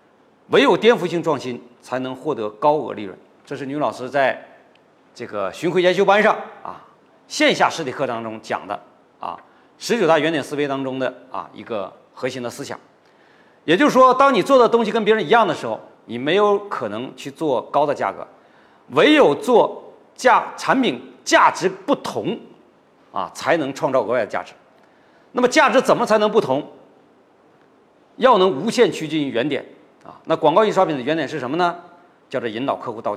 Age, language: 40-59, Chinese